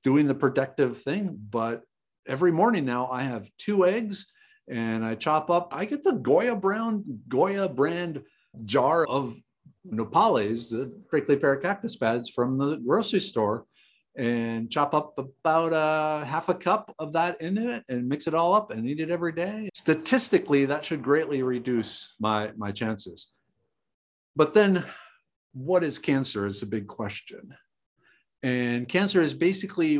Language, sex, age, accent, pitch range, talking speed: English, male, 50-69, American, 120-165 Hz, 155 wpm